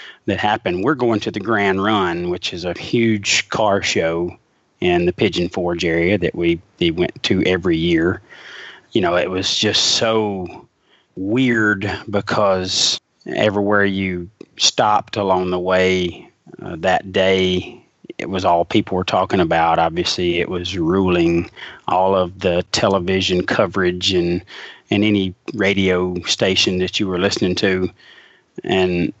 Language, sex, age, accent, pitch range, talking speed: English, male, 30-49, American, 90-105 Hz, 145 wpm